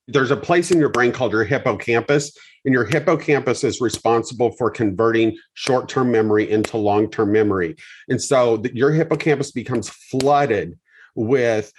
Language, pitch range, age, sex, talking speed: English, 110-140 Hz, 40-59, male, 145 wpm